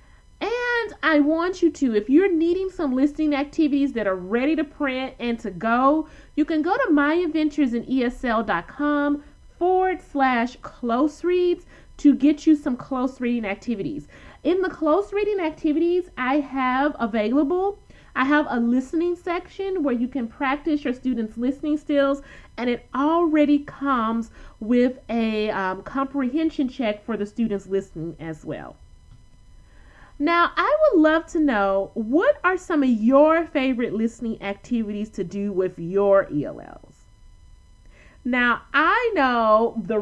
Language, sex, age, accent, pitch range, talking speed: English, female, 30-49, American, 225-310 Hz, 140 wpm